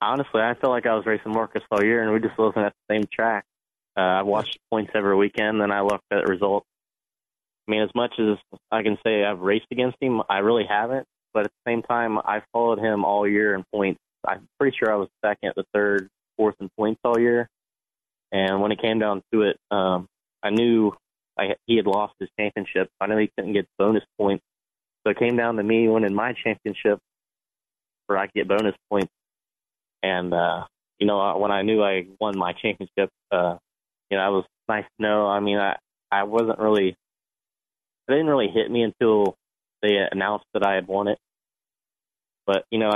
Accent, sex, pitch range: American, male, 100-110 Hz